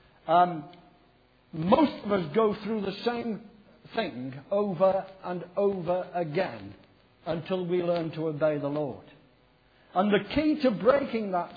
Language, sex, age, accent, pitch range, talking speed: English, male, 60-79, British, 155-215 Hz, 135 wpm